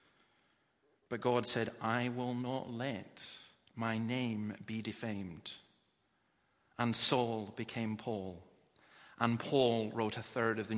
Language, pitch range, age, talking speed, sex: English, 115-145 Hz, 40-59, 120 wpm, male